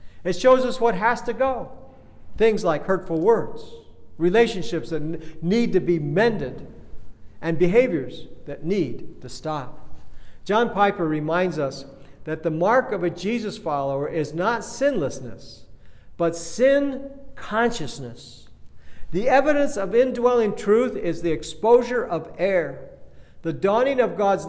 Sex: male